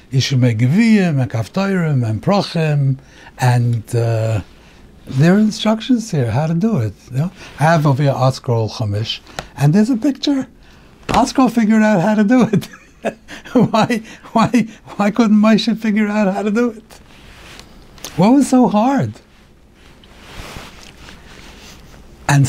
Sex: male